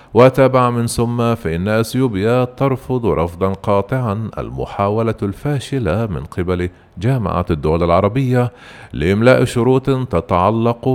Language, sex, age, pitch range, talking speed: Arabic, male, 40-59, 95-125 Hz, 100 wpm